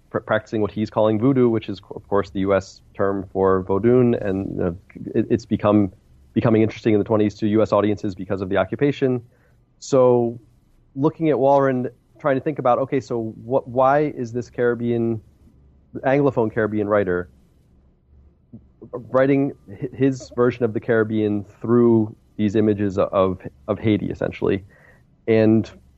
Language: English